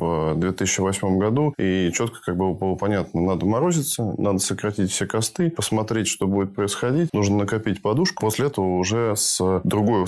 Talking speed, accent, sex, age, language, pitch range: 155 wpm, native, male, 20-39, Russian, 95-110 Hz